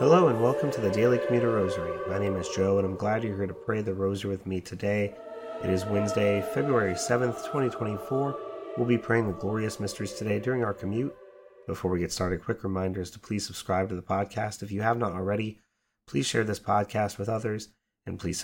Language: English